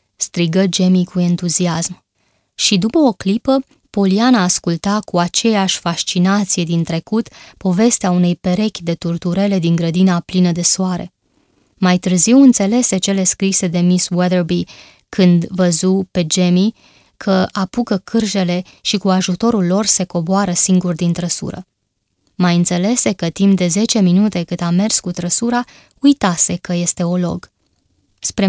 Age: 20-39